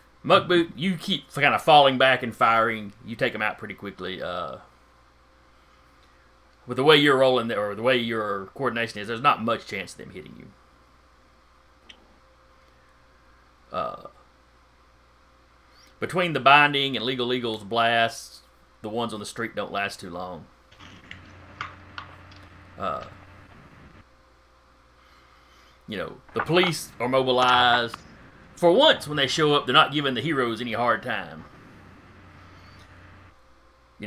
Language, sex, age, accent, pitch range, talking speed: English, male, 30-49, American, 85-130 Hz, 130 wpm